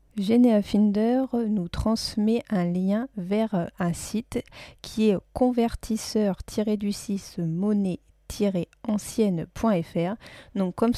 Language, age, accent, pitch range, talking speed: French, 40-59, French, 185-220 Hz, 70 wpm